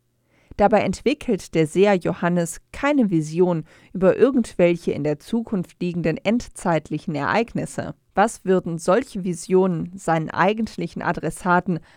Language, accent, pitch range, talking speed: German, German, 170-215 Hz, 110 wpm